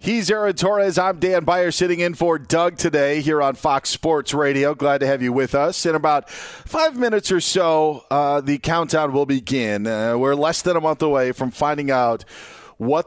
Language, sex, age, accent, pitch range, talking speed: English, male, 40-59, American, 110-145 Hz, 200 wpm